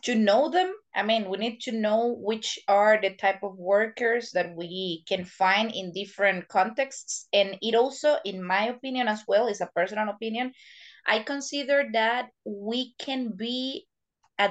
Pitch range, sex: 190-235 Hz, female